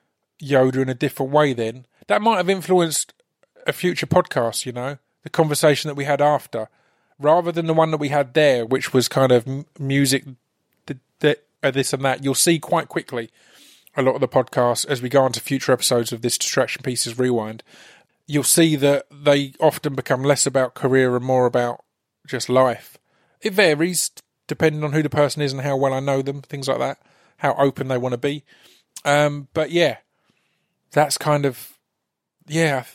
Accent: British